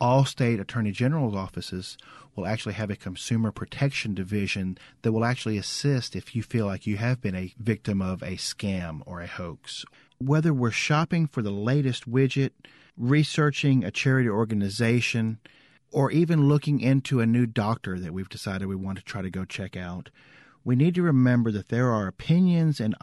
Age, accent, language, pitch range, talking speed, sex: 40-59, American, English, 105-135 Hz, 180 wpm, male